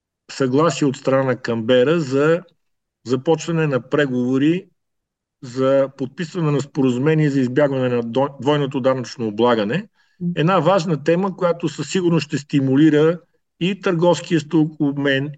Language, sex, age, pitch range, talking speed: Bulgarian, male, 50-69, 130-165 Hz, 115 wpm